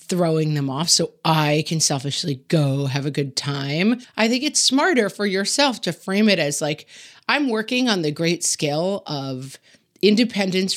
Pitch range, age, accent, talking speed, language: 155-215 Hz, 30-49, American, 175 wpm, English